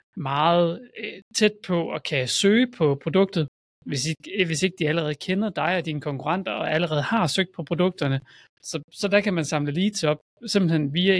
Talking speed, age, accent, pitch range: 190 wpm, 30-49, native, 145-185 Hz